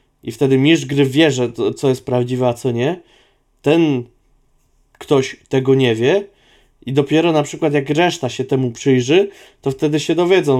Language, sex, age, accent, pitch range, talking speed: Polish, male, 20-39, native, 125-145 Hz, 165 wpm